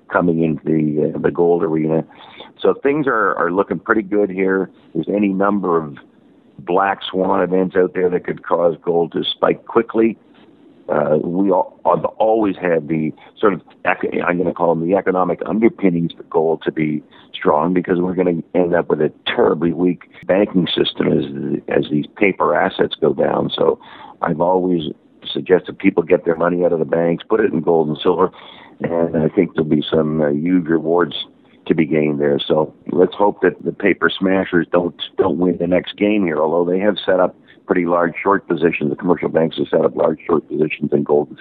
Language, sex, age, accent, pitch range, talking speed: English, male, 50-69, American, 80-90 Hz, 195 wpm